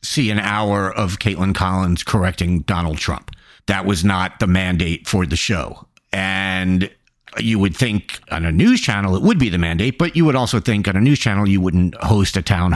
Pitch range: 90-120 Hz